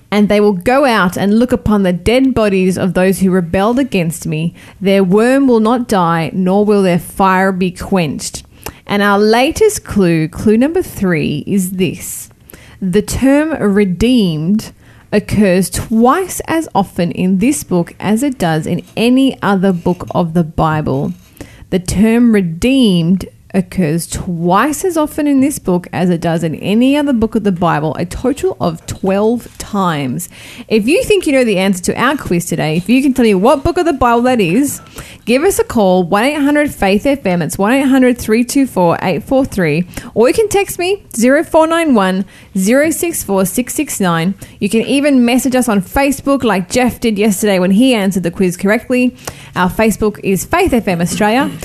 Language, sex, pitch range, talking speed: English, female, 185-260 Hz, 165 wpm